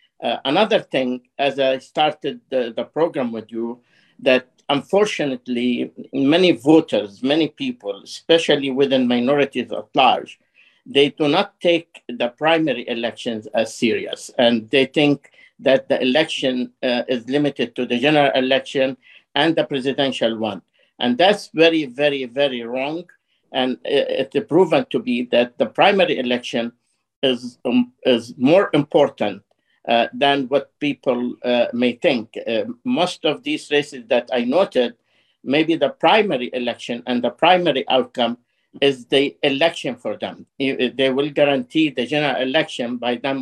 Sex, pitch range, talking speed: male, 120-150 Hz, 145 wpm